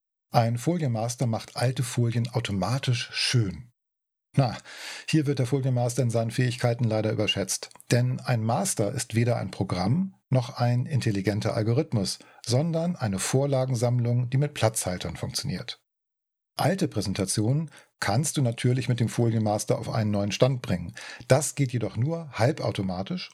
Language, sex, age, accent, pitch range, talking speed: German, male, 50-69, German, 110-140 Hz, 135 wpm